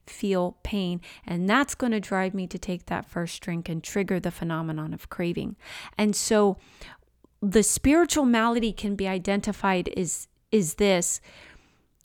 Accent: American